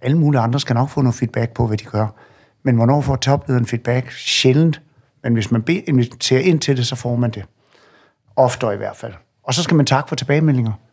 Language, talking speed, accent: Danish, 220 wpm, native